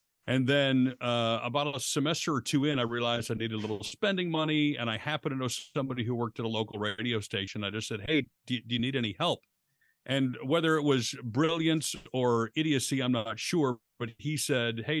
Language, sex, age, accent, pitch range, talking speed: English, male, 50-69, American, 115-140 Hz, 215 wpm